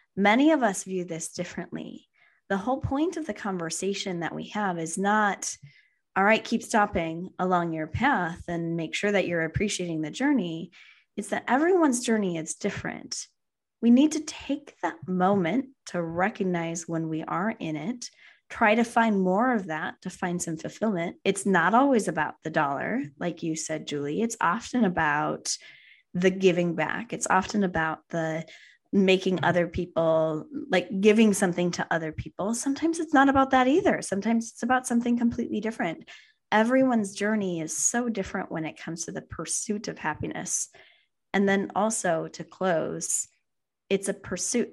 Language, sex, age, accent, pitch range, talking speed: English, female, 20-39, American, 170-235 Hz, 165 wpm